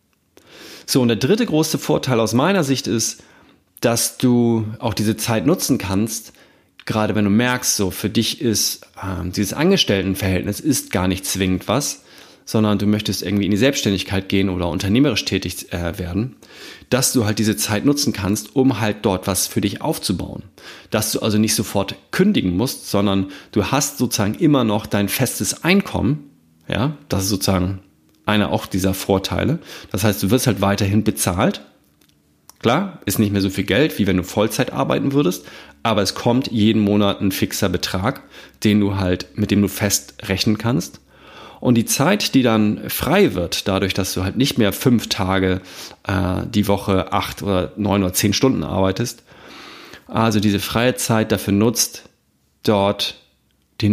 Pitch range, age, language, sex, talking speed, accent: 95-115 Hz, 30-49, German, male, 170 wpm, German